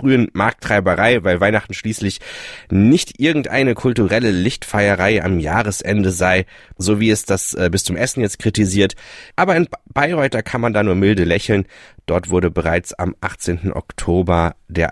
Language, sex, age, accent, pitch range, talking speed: German, male, 30-49, German, 90-110 Hz, 155 wpm